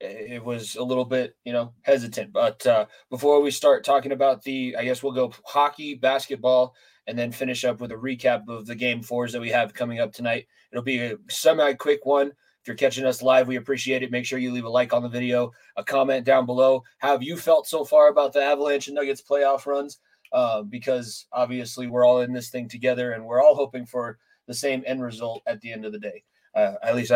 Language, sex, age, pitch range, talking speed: English, male, 20-39, 120-140 Hz, 230 wpm